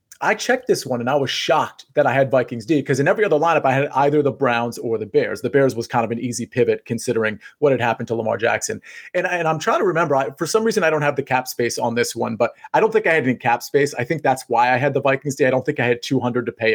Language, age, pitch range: English, 30-49, 125-160 Hz